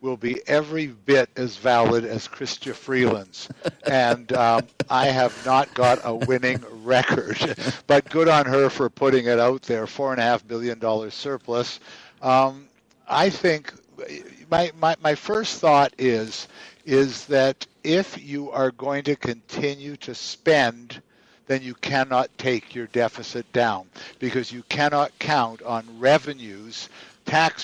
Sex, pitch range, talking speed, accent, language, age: male, 120-140 Hz, 145 wpm, American, English, 60-79